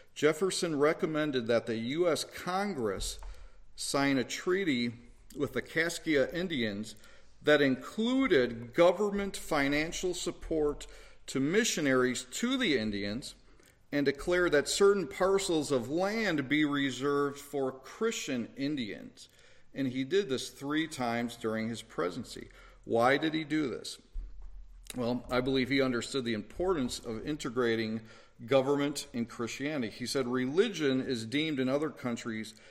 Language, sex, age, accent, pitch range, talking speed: English, male, 40-59, American, 115-150 Hz, 125 wpm